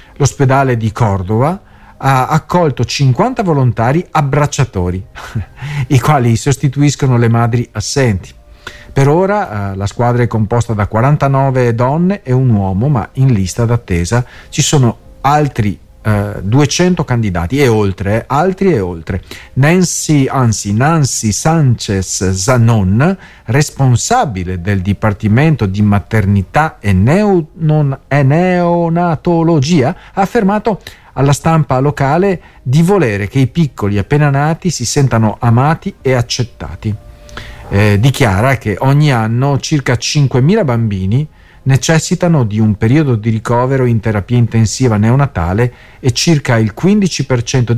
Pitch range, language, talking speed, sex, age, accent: 105-145 Hz, Italian, 115 wpm, male, 50-69, native